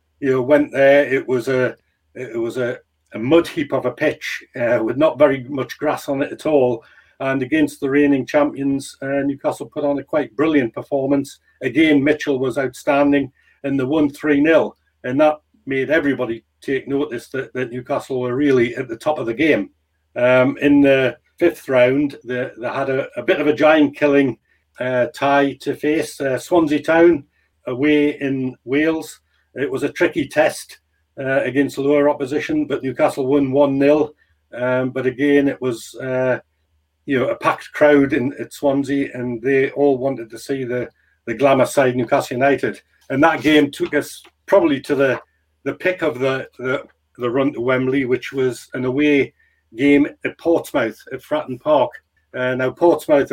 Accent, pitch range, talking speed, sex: British, 130-145 Hz, 180 wpm, male